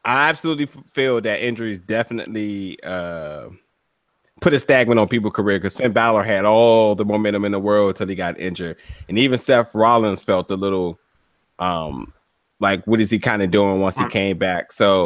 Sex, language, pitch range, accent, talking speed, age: male, English, 105-135 Hz, American, 185 wpm, 20-39